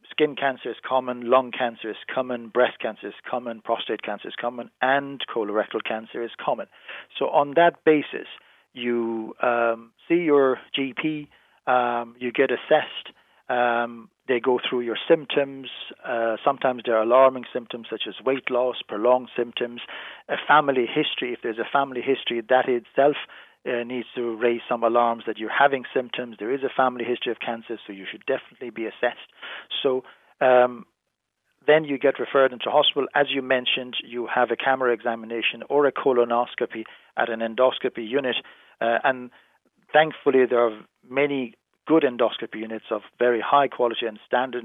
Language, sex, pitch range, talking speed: English, male, 120-140 Hz, 165 wpm